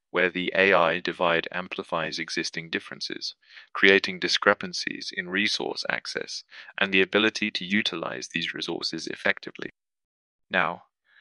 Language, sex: English, male